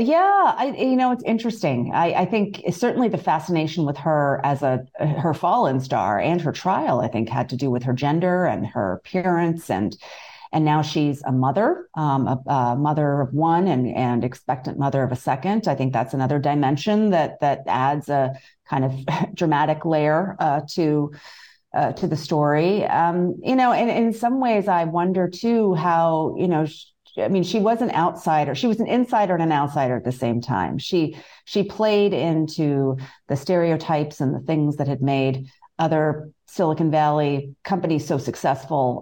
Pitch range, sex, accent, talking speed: 140-180 Hz, female, American, 185 wpm